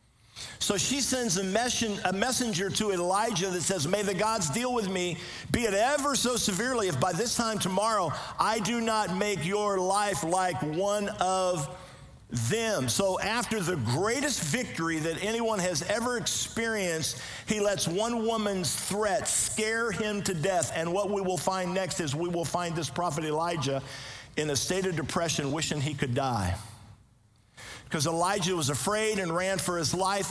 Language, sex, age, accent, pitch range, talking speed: English, male, 50-69, American, 165-210 Hz, 170 wpm